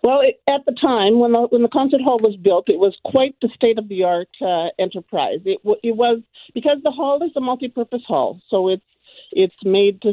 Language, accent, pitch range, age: English, American, 195-245 Hz, 50-69